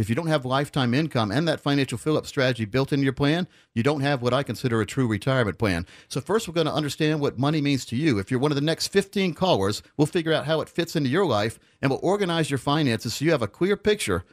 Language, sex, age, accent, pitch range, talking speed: English, male, 50-69, American, 120-165 Hz, 270 wpm